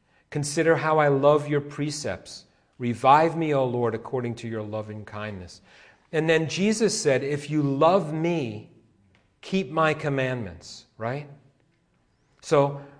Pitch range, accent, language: 120-155 Hz, American, English